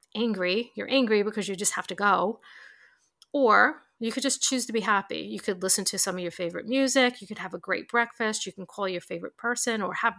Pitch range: 195-240 Hz